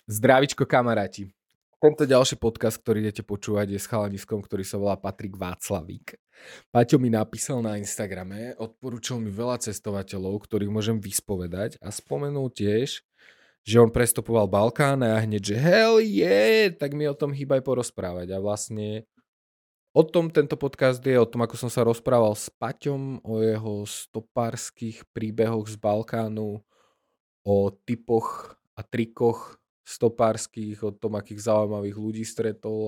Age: 20-39